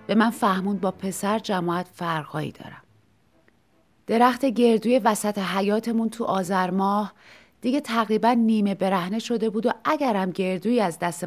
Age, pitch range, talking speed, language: 30-49, 190-240 Hz, 135 wpm, Persian